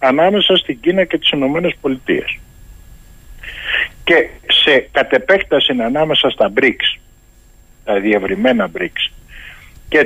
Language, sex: Greek, male